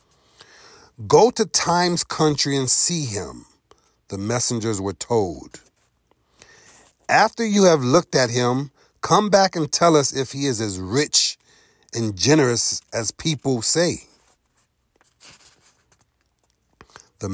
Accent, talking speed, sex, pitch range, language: American, 115 wpm, male, 105-175 Hz, English